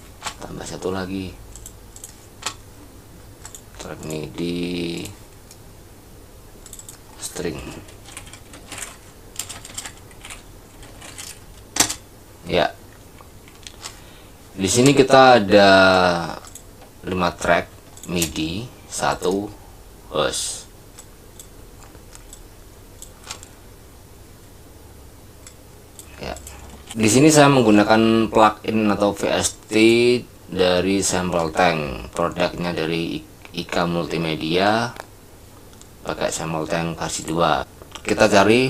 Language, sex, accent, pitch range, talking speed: Indonesian, male, native, 90-105 Hz, 60 wpm